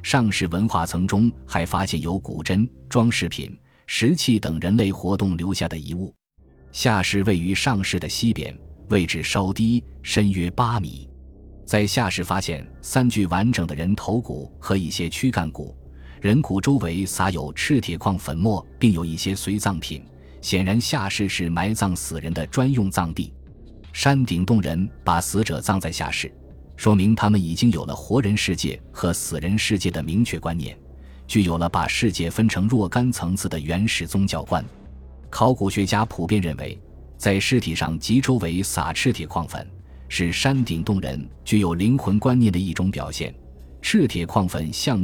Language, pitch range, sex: Chinese, 80-105 Hz, male